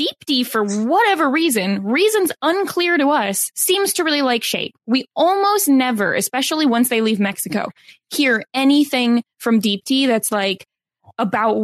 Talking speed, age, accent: 145 wpm, 10-29, American